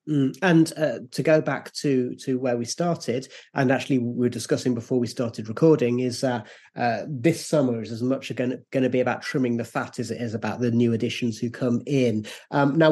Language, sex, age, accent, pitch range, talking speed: English, male, 30-49, British, 130-160 Hz, 220 wpm